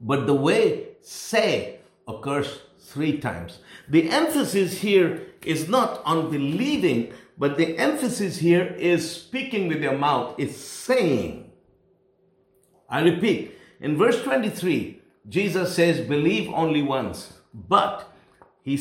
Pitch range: 135-170 Hz